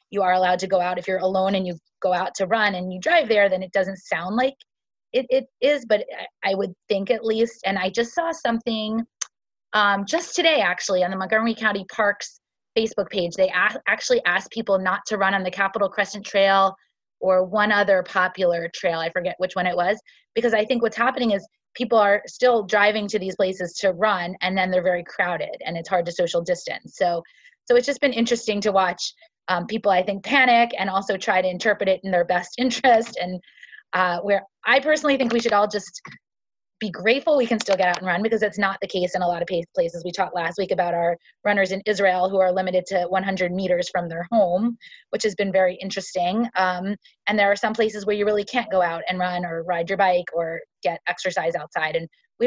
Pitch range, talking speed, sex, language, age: 185-230 Hz, 225 wpm, female, English, 20-39